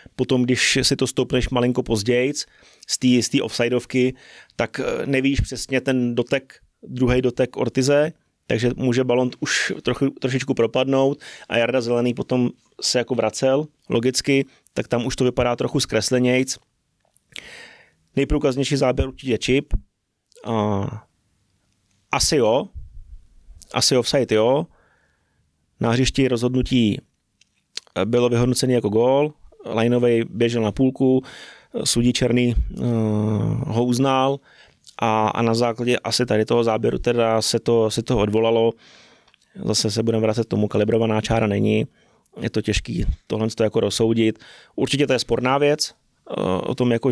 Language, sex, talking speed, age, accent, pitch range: Czech, male, 130 wpm, 30-49, native, 110-130 Hz